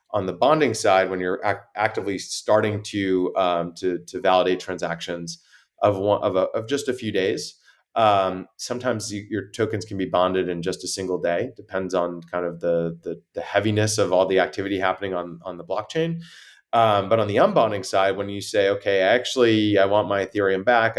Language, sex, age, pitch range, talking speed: English, male, 30-49, 90-105 Hz, 200 wpm